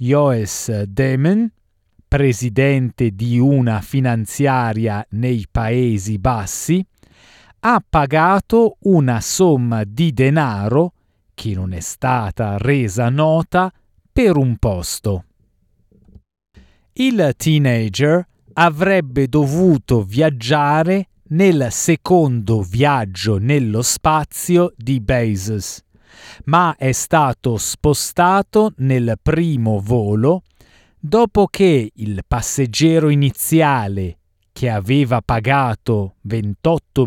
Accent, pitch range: native, 110-160 Hz